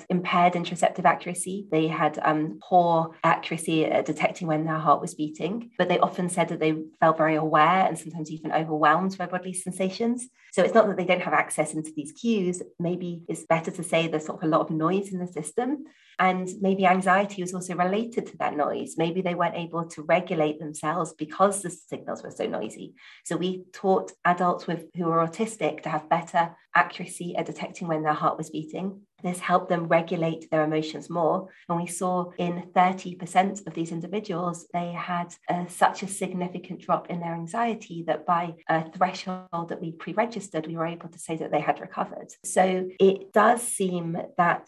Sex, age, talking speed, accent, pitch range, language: female, 30-49, 190 wpm, British, 165-185 Hz, English